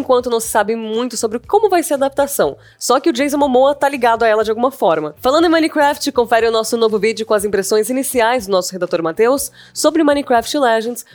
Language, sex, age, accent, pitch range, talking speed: Portuguese, female, 20-39, Brazilian, 220-295 Hz, 230 wpm